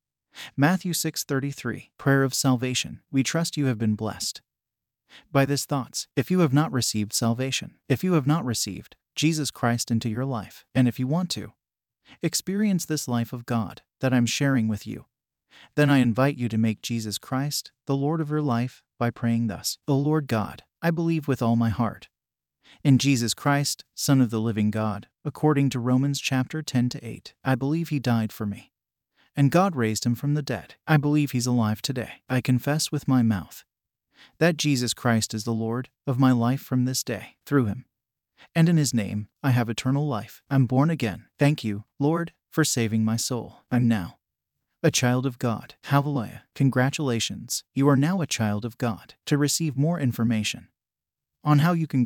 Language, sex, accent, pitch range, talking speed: English, male, American, 115-145 Hz, 185 wpm